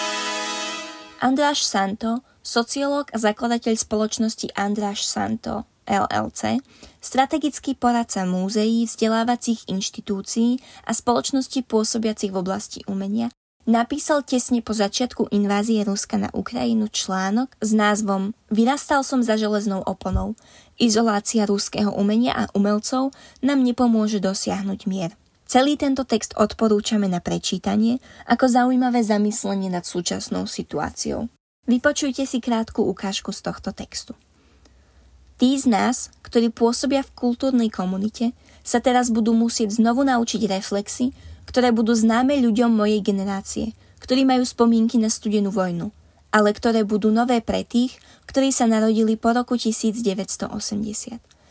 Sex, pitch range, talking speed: female, 205-245 Hz, 120 wpm